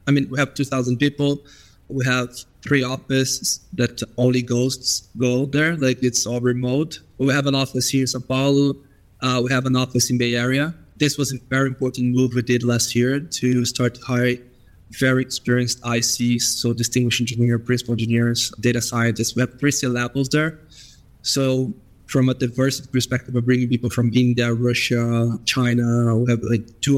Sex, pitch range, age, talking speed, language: male, 120-135 Hz, 20-39, 180 wpm, English